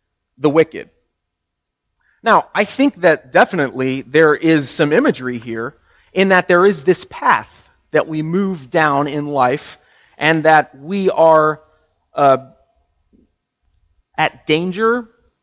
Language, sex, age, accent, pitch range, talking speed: English, male, 30-49, American, 145-200 Hz, 120 wpm